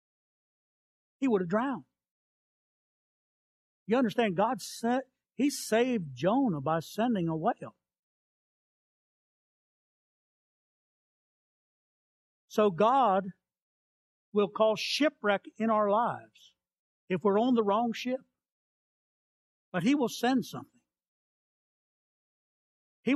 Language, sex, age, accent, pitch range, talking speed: English, male, 60-79, American, 175-240 Hz, 90 wpm